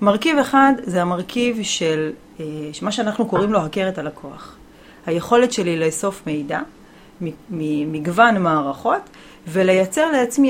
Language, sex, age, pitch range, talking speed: Hebrew, female, 30-49, 165-240 Hz, 110 wpm